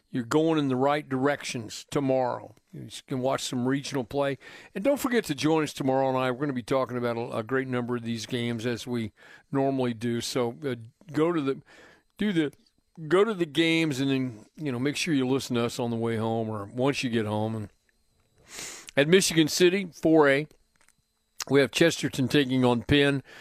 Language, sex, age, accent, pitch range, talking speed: English, male, 50-69, American, 130-170 Hz, 205 wpm